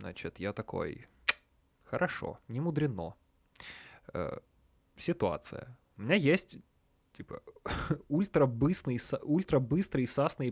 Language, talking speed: Russian, 80 wpm